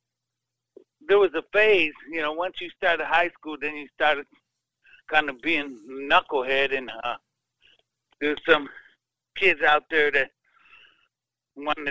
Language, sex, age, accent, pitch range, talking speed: English, male, 60-79, American, 130-160 Hz, 135 wpm